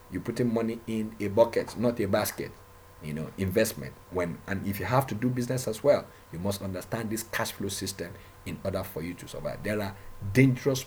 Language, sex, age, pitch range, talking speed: English, male, 50-69, 95-115 Hz, 210 wpm